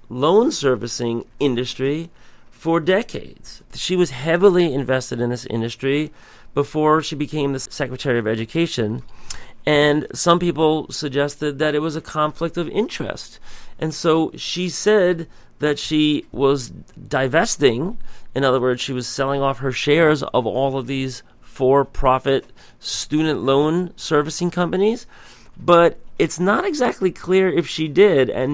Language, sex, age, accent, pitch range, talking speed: English, male, 40-59, American, 125-160 Hz, 135 wpm